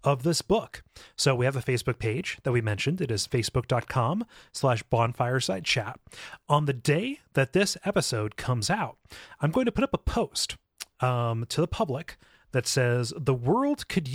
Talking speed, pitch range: 165 wpm, 120-155 Hz